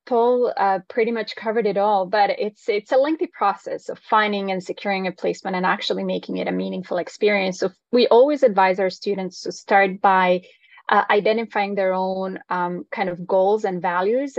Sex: female